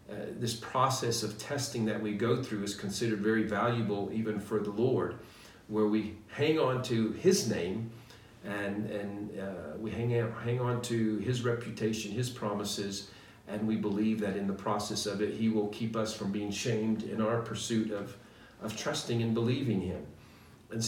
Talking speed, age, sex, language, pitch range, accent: 180 wpm, 50-69, male, English, 105-120 Hz, American